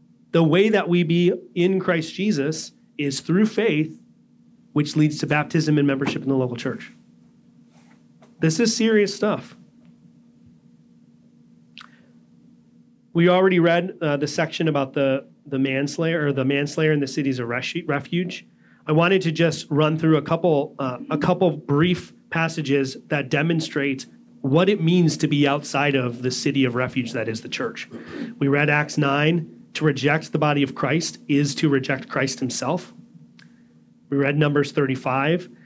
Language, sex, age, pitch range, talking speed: English, male, 30-49, 135-165 Hz, 160 wpm